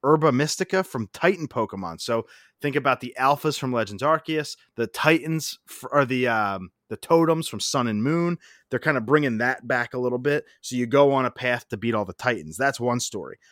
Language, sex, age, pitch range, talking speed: English, male, 30-49, 115-150 Hz, 210 wpm